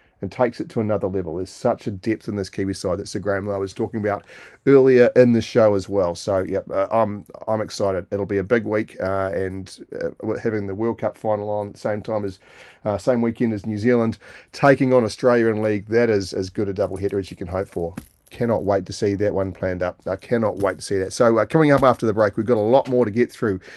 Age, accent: 40-59, Australian